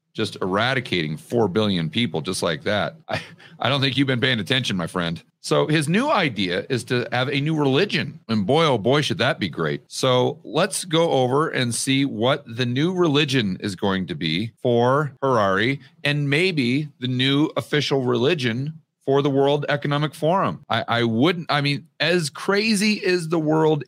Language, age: English, 40-59